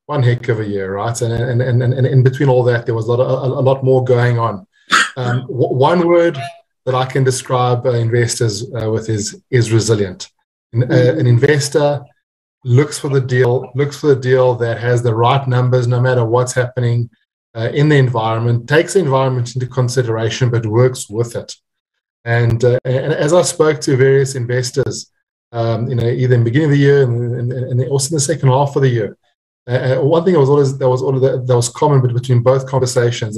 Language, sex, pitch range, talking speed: English, male, 120-135 Hz, 210 wpm